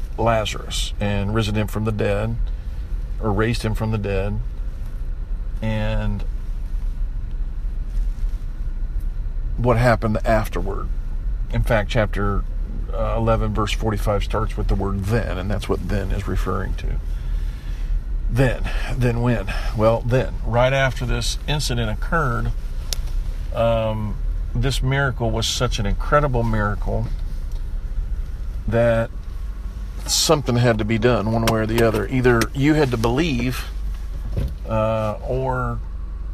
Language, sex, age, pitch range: English, male, 50-69, 80-115 Hz